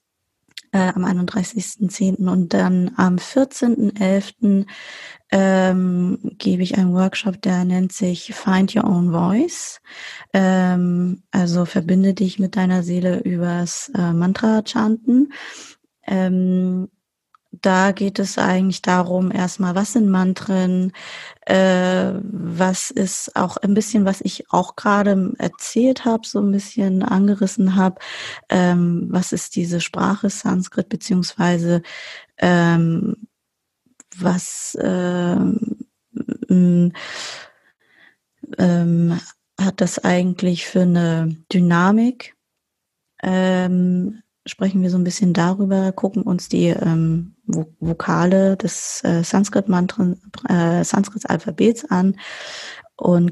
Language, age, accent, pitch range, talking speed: German, 20-39, German, 175-205 Hz, 105 wpm